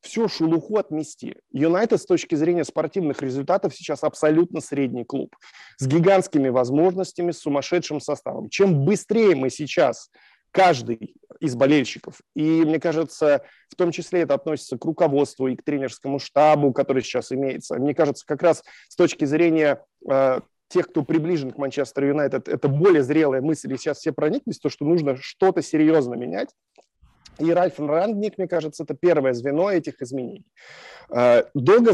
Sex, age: male, 20-39